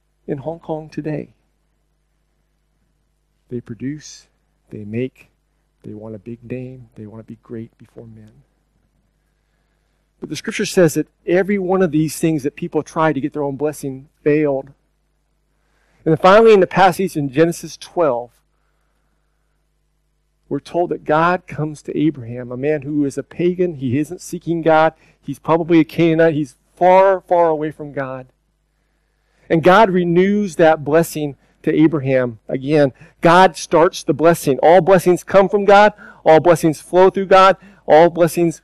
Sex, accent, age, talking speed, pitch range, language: male, American, 40-59, 150 wpm, 140-175 Hz, English